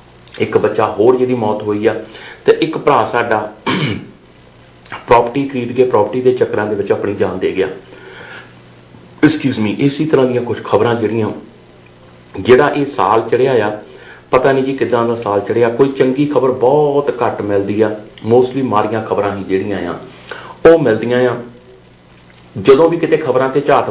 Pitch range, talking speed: 100-130 Hz, 130 wpm